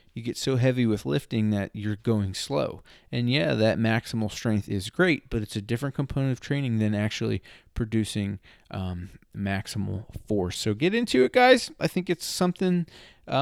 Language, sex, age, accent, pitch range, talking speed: English, male, 30-49, American, 100-125 Hz, 175 wpm